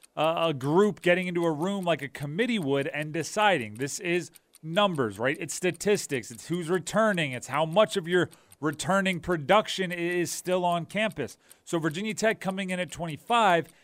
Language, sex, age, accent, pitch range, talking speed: English, male, 30-49, American, 140-185 Hz, 175 wpm